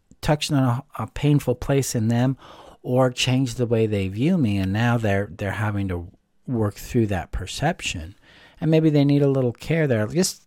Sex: male